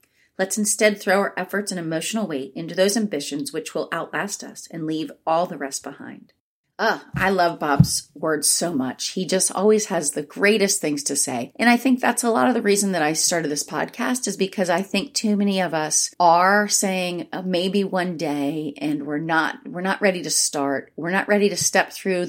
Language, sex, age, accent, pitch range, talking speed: English, female, 30-49, American, 155-195 Hz, 215 wpm